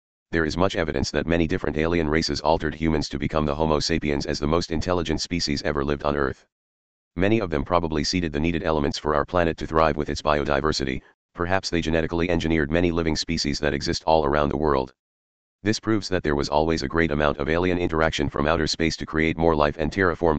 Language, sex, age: English, male, 40-59